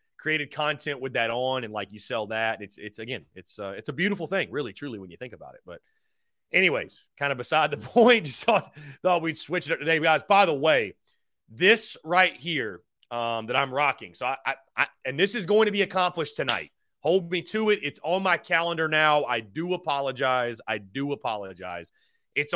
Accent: American